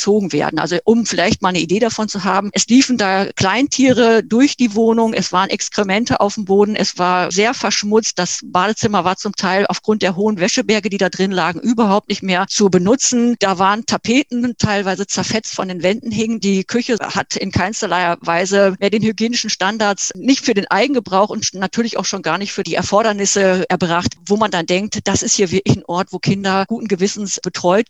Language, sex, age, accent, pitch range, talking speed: German, female, 50-69, German, 180-220 Hz, 200 wpm